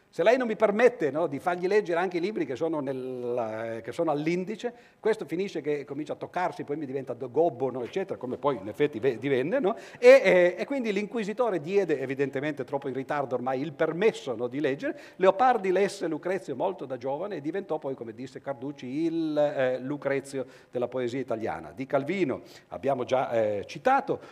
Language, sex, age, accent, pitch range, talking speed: Italian, male, 50-69, native, 135-190 Hz, 185 wpm